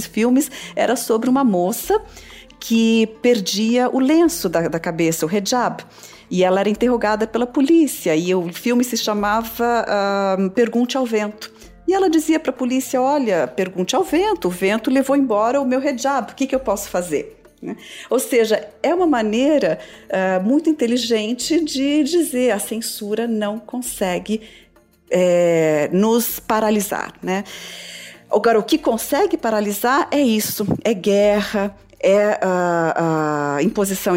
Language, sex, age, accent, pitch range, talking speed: Portuguese, female, 40-59, Brazilian, 185-245 Hz, 145 wpm